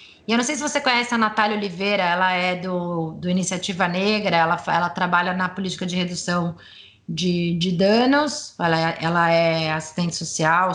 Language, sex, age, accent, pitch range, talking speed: Portuguese, female, 20-39, Brazilian, 170-220 Hz, 175 wpm